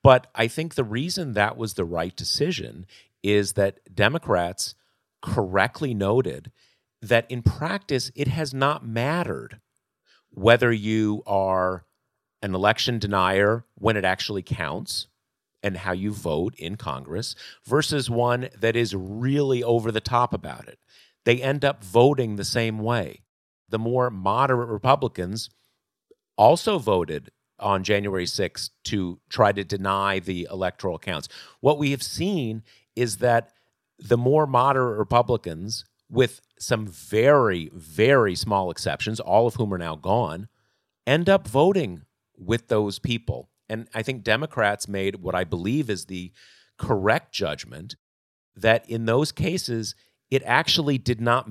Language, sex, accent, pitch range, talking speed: English, male, American, 100-125 Hz, 140 wpm